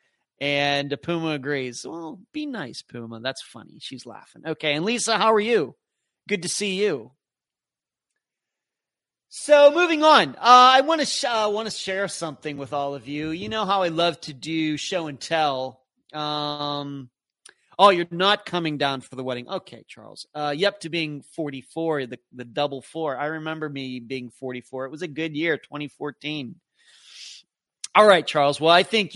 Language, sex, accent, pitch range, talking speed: English, male, American, 140-195 Hz, 175 wpm